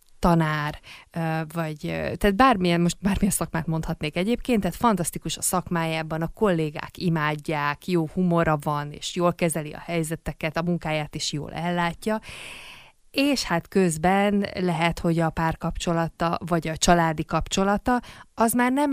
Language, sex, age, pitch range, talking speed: Hungarian, female, 20-39, 155-185 Hz, 135 wpm